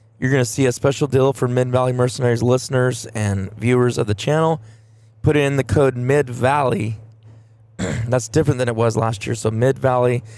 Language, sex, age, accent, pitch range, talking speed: English, male, 20-39, American, 110-135 Hz, 190 wpm